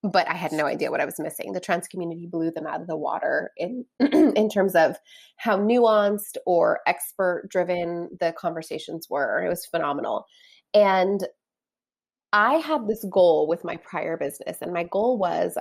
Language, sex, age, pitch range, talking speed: English, female, 20-39, 170-225 Hz, 175 wpm